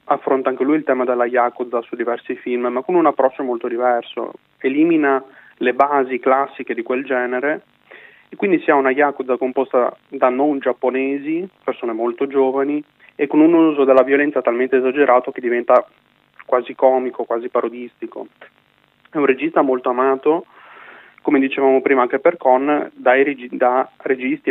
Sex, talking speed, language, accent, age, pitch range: male, 155 wpm, Italian, native, 30-49, 125-140 Hz